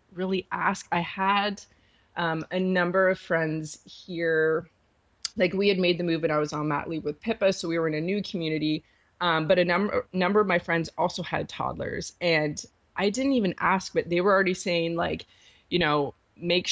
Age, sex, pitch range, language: 20-39, female, 160-190 Hz, English